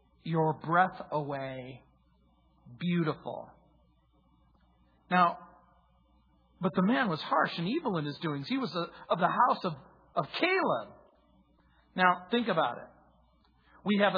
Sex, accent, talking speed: male, American, 125 wpm